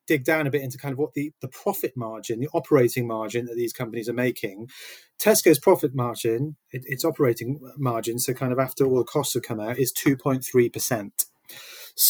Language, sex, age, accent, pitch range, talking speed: English, male, 30-49, British, 125-155 Hz, 195 wpm